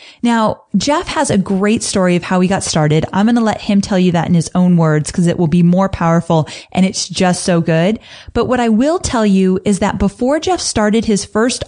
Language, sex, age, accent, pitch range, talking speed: English, female, 30-49, American, 180-235 Hz, 240 wpm